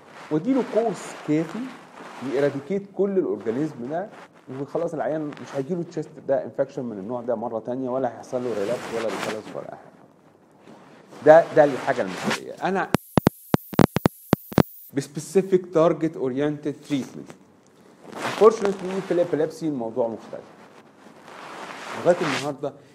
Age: 40-59